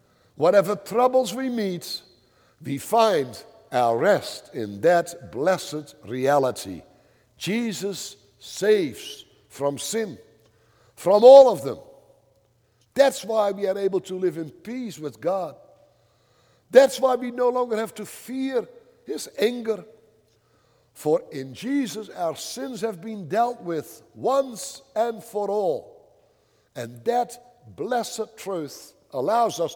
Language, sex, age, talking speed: English, male, 60-79, 120 wpm